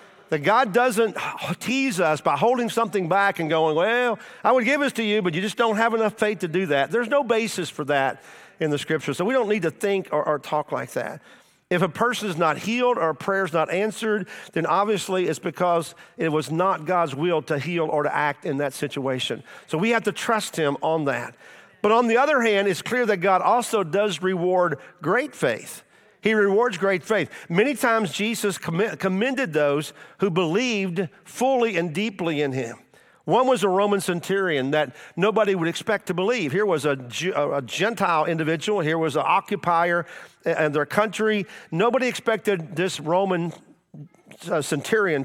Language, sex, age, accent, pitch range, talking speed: English, male, 50-69, American, 160-215 Hz, 190 wpm